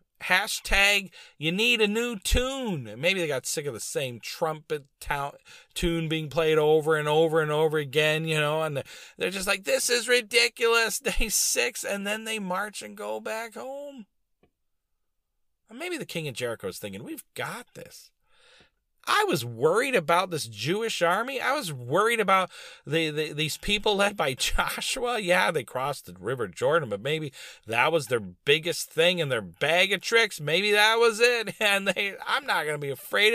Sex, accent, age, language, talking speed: male, American, 40-59, English, 180 wpm